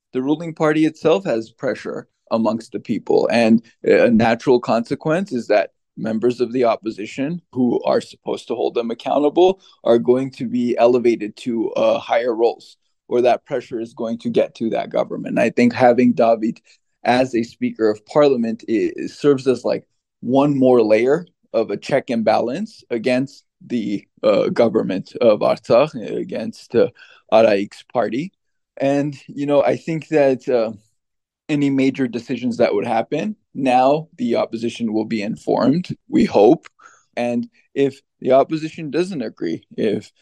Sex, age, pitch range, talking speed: male, 20-39, 115-150 Hz, 155 wpm